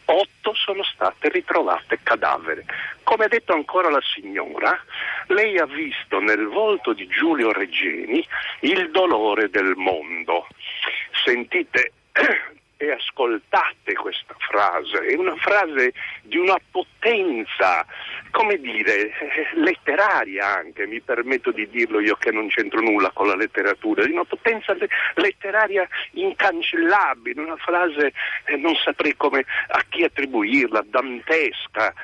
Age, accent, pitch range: 60-79, native, 235-390 Hz